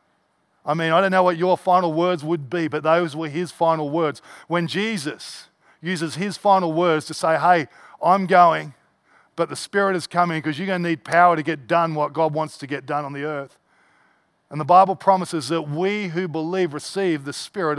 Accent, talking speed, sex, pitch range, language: Australian, 205 wpm, male, 150-180 Hz, English